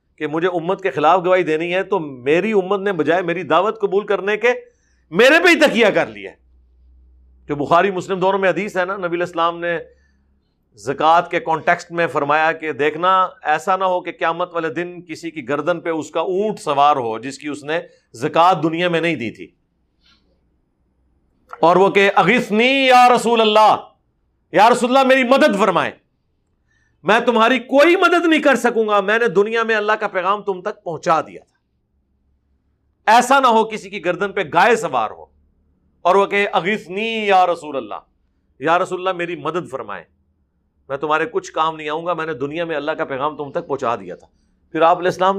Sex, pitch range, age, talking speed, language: male, 145-200 Hz, 50-69, 185 wpm, Urdu